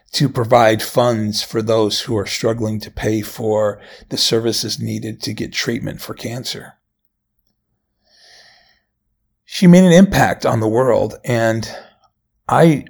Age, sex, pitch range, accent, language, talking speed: 40-59, male, 110-145 Hz, American, English, 130 wpm